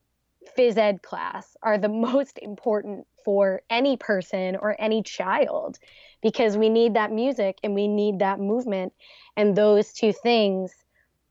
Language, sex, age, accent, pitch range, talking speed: English, female, 20-39, American, 195-230 Hz, 145 wpm